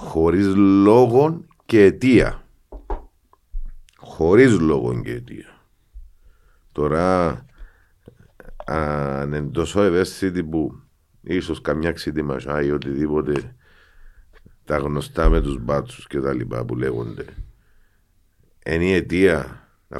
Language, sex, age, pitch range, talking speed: Greek, male, 50-69, 75-90 Hz, 100 wpm